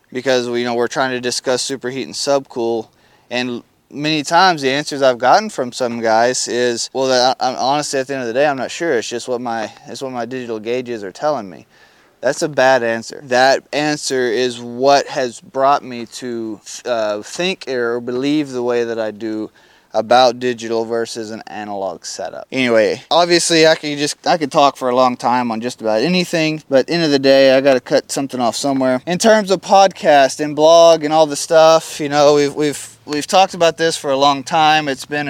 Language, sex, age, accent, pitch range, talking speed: English, male, 20-39, American, 125-150 Hz, 205 wpm